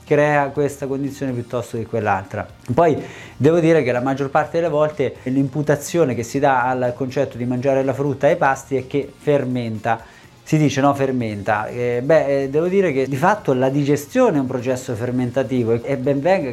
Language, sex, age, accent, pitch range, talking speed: Italian, male, 30-49, native, 120-150 Hz, 185 wpm